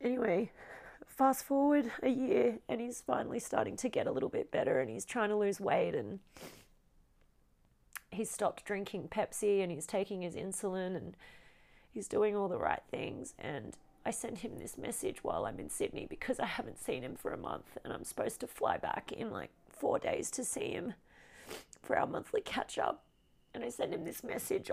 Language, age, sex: English, 30-49, female